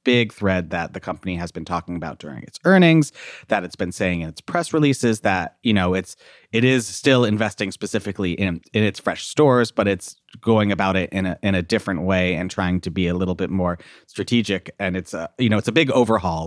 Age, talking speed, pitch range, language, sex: 30-49, 230 wpm, 90-115 Hz, English, male